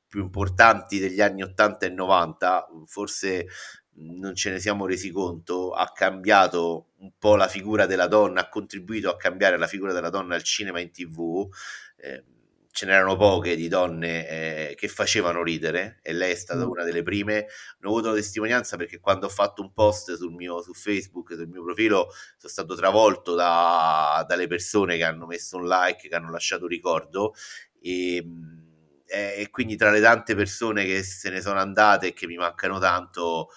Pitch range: 90-110 Hz